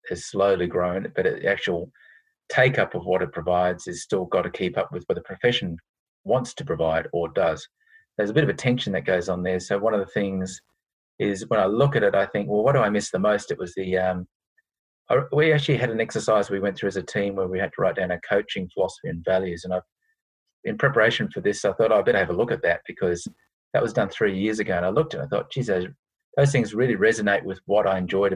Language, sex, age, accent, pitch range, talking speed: English, male, 30-49, Australian, 95-140 Hz, 260 wpm